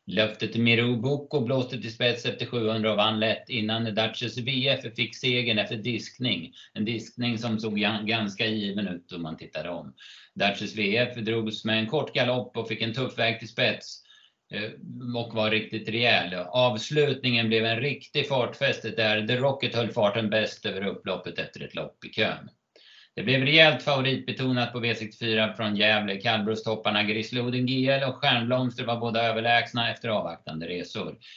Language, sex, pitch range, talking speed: Swedish, male, 110-125 Hz, 160 wpm